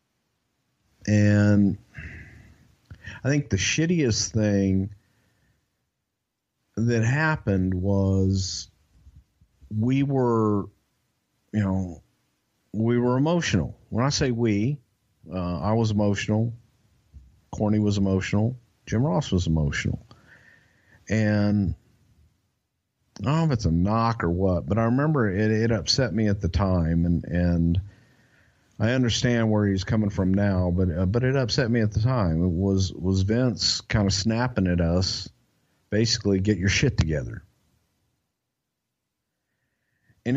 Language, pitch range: English, 95-115 Hz